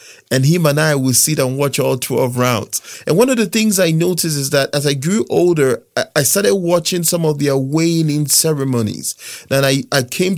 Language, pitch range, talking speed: English, 135-175 Hz, 210 wpm